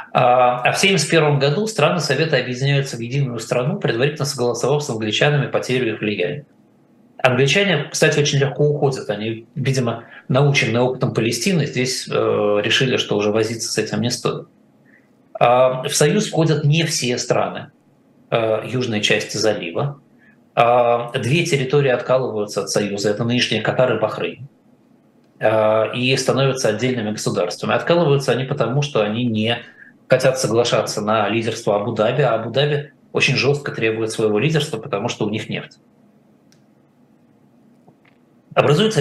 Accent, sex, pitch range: native, male, 115-145 Hz